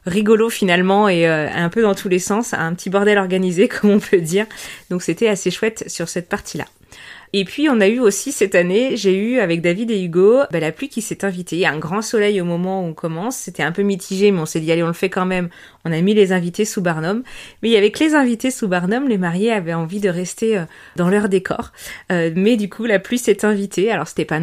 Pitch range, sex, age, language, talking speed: 175-215 Hz, female, 20-39, French, 255 wpm